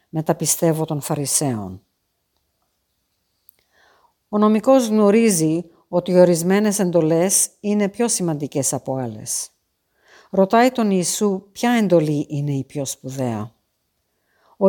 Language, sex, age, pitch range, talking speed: Greek, female, 50-69, 145-205 Hz, 105 wpm